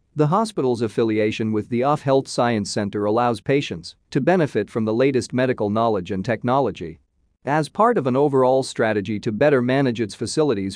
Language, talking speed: English, 175 wpm